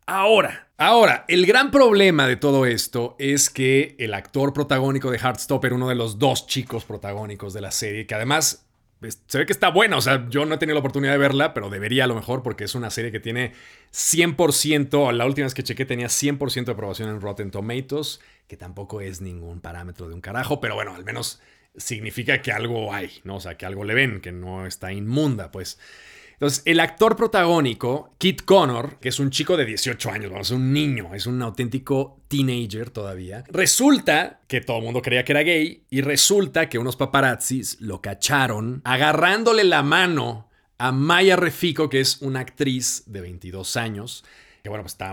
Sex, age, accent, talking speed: male, 40-59, Mexican, 195 wpm